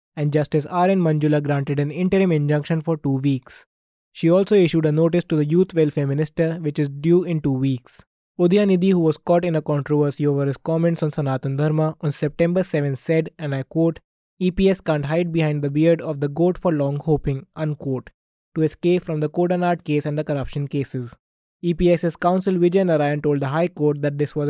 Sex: male